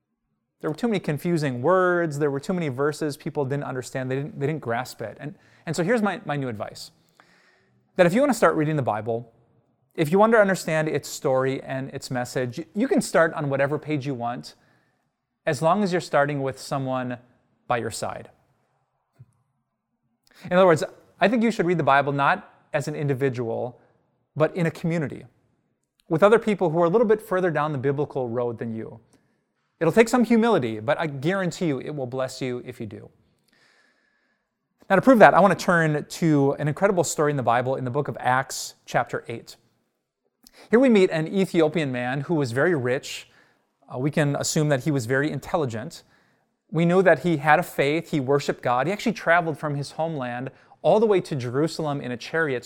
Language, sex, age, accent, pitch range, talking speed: English, male, 30-49, American, 130-170 Hz, 200 wpm